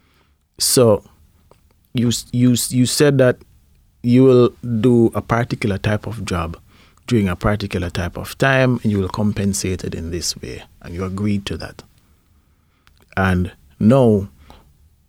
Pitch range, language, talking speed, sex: 85-115 Hz, English, 140 wpm, male